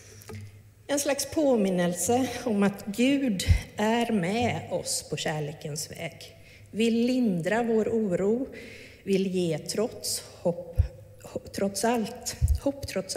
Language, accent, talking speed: Swedish, native, 115 wpm